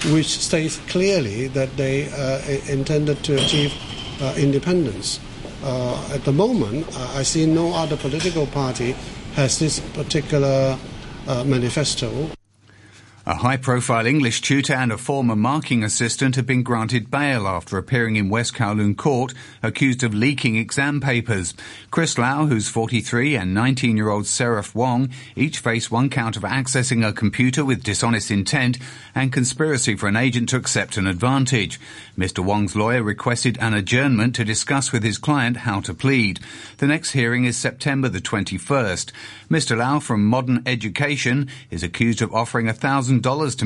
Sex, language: male, English